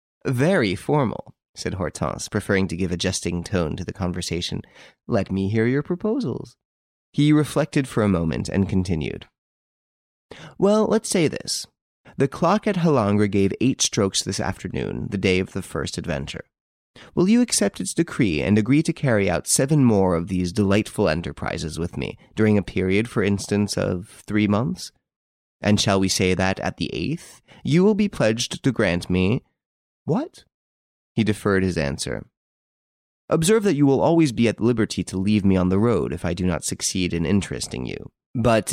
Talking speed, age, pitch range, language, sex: 175 wpm, 30-49, 90-125 Hz, English, male